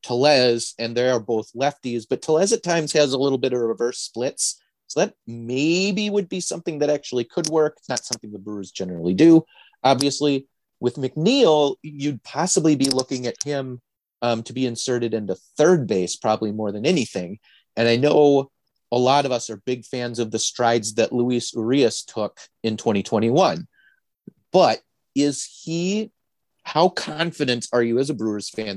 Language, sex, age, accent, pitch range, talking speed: English, male, 30-49, American, 115-145 Hz, 175 wpm